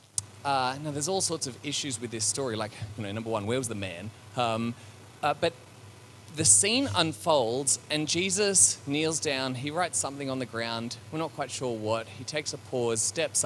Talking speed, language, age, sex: 200 wpm, English, 30-49, male